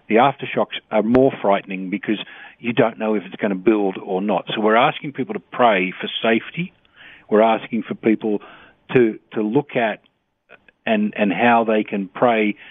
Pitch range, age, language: 100-130 Hz, 50-69, English